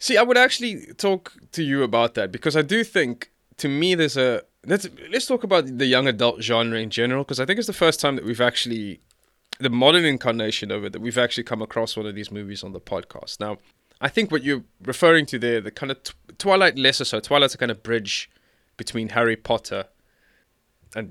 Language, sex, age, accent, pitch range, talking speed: English, male, 20-39, South African, 110-140 Hz, 220 wpm